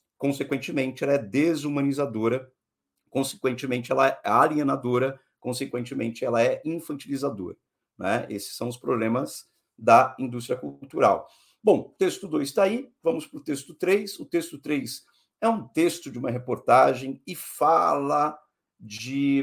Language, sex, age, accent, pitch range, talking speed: Portuguese, male, 50-69, Brazilian, 130-170 Hz, 135 wpm